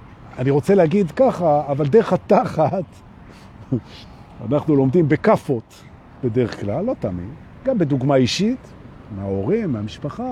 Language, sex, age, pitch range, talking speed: Hebrew, male, 50-69, 120-195 Hz, 110 wpm